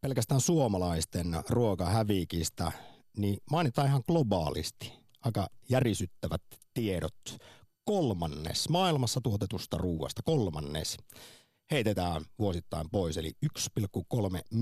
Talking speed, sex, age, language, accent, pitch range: 80 wpm, male, 50-69, Finnish, native, 90-125 Hz